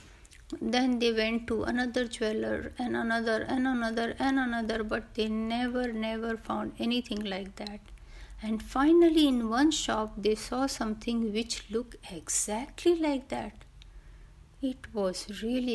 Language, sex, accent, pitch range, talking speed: Hindi, female, native, 210-245 Hz, 135 wpm